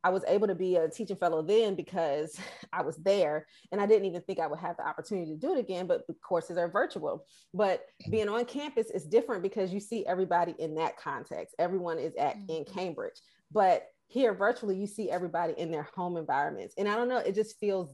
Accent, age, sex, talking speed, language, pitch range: American, 30-49, female, 225 wpm, English, 170-220 Hz